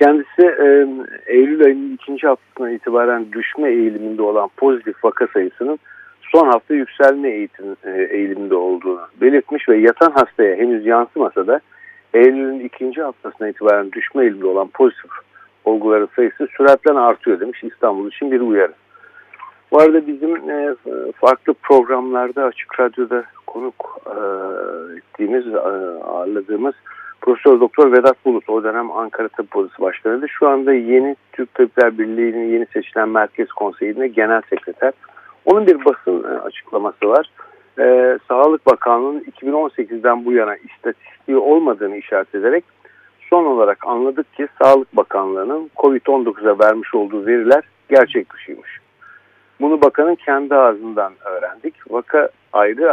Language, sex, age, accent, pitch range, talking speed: Turkish, male, 60-79, native, 115-175 Hz, 120 wpm